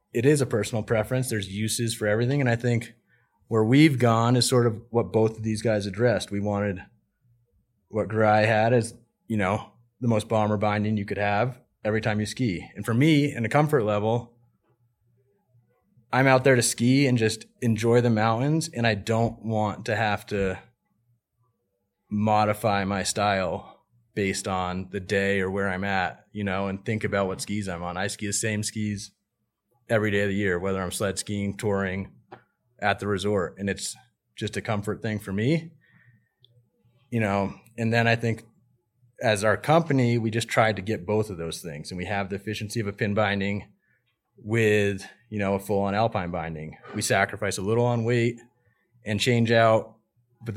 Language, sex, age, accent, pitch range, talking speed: English, male, 30-49, American, 100-120 Hz, 185 wpm